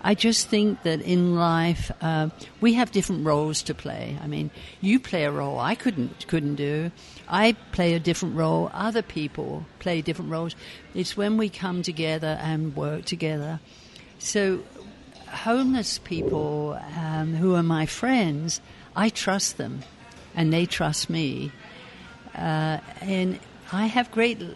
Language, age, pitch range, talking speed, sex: English, 60-79, 155-195 Hz, 150 wpm, female